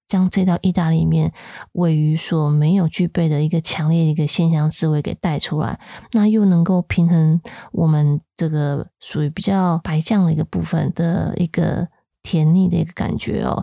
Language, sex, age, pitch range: Chinese, female, 20-39, 155-185 Hz